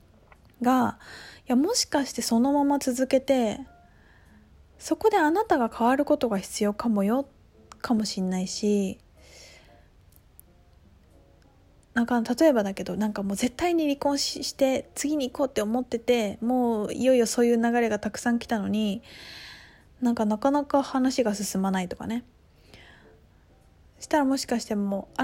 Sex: female